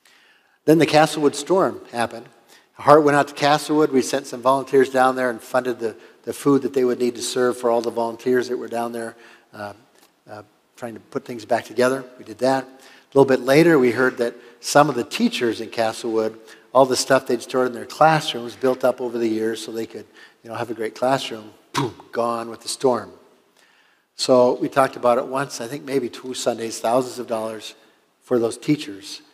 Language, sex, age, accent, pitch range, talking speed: English, male, 50-69, American, 120-140 Hz, 215 wpm